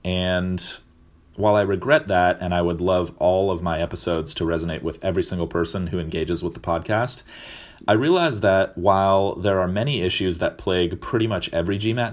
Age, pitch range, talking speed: 30-49, 85-100 Hz, 190 wpm